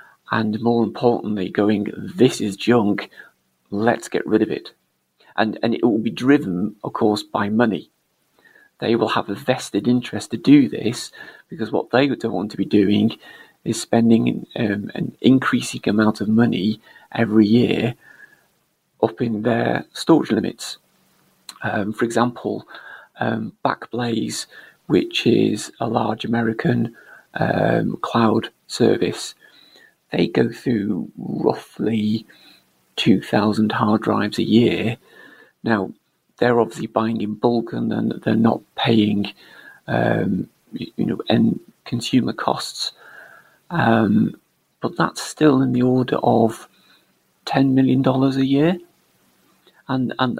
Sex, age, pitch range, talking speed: male, 40-59, 105-125 Hz, 125 wpm